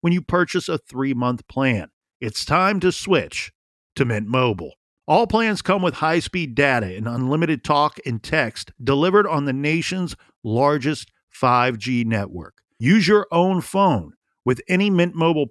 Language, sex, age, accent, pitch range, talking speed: English, male, 50-69, American, 135-175 Hz, 150 wpm